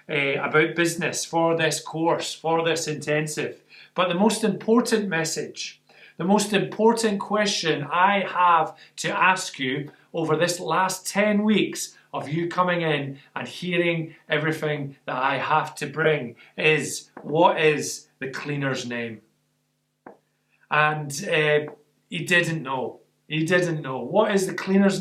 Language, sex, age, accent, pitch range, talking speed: English, male, 30-49, British, 155-195 Hz, 140 wpm